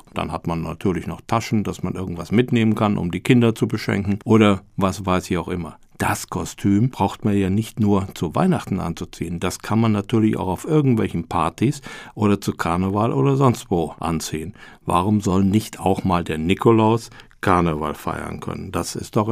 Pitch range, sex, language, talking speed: 90-115 Hz, male, German, 185 wpm